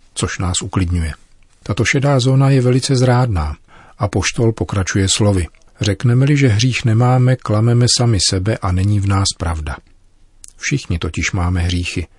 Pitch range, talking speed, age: 90-115 Hz, 145 wpm, 40-59